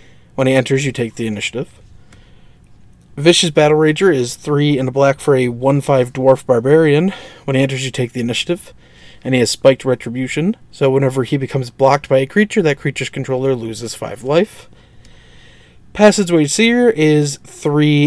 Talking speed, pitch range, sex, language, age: 165 wpm, 125-155 Hz, male, English, 30-49